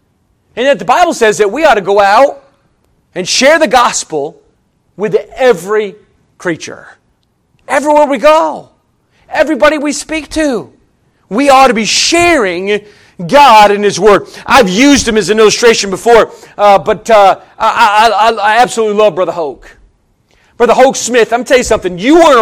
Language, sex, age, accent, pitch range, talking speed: English, male, 40-59, American, 200-290 Hz, 165 wpm